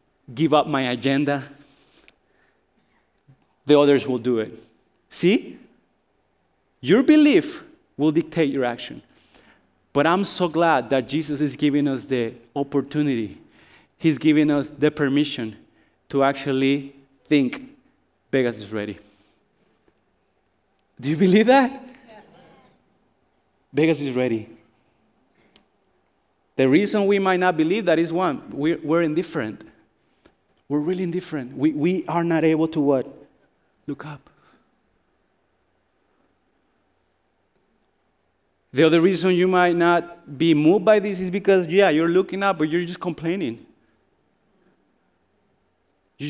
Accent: Mexican